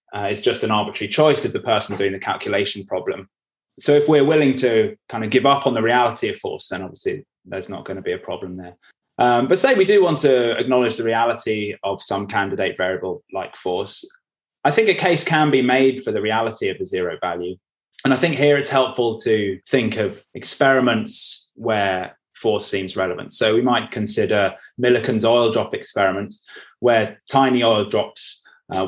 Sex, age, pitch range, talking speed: male, 20-39, 105-155 Hz, 195 wpm